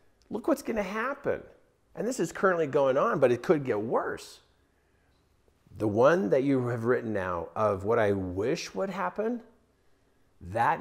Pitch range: 105-145 Hz